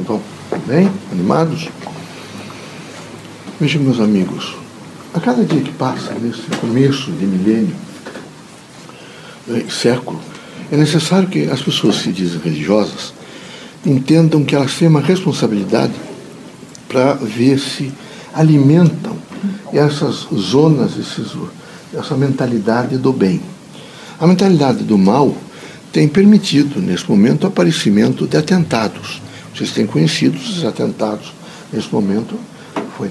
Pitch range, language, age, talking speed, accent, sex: 140-185 Hz, Portuguese, 60-79, 110 wpm, Brazilian, male